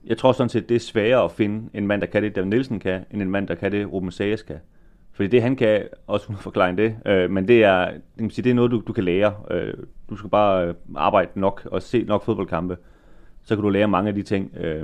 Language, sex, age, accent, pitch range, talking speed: Danish, male, 30-49, native, 90-110 Hz, 250 wpm